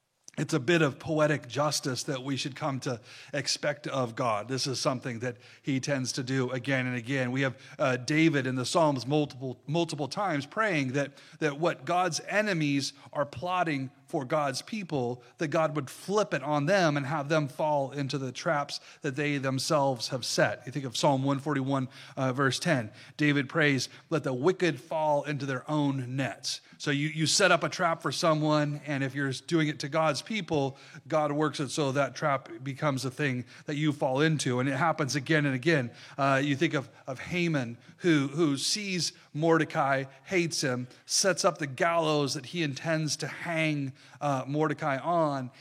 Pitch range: 135-160 Hz